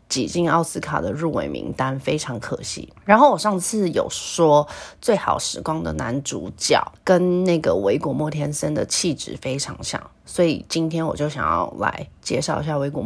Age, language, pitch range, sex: 30-49, Chinese, 150-180 Hz, female